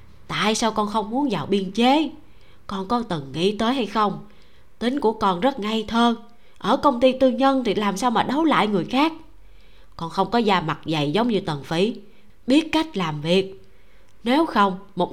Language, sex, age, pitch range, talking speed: Vietnamese, female, 20-39, 165-230 Hz, 200 wpm